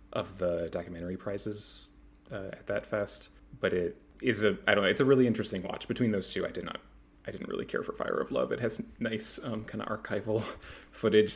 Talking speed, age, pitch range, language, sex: 220 wpm, 30-49, 90-110 Hz, English, male